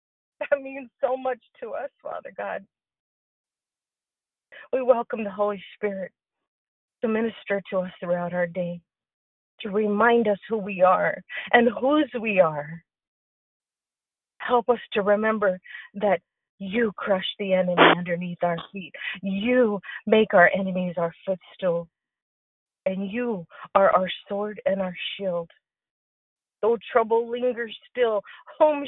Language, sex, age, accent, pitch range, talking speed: English, female, 40-59, American, 175-230 Hz, 125 wpm